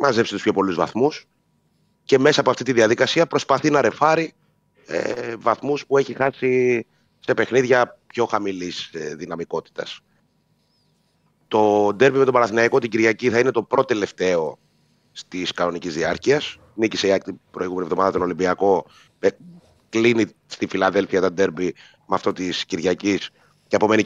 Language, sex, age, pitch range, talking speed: Greek, male, 30-49, 105-140 Hz, 145 wpm